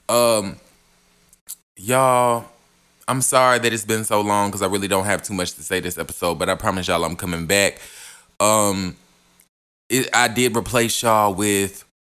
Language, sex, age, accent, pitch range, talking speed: English, male, 20-39, American, 100-145 Hz, 170 wpm